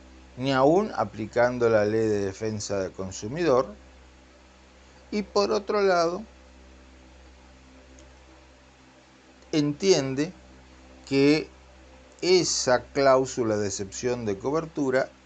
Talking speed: 85 wpm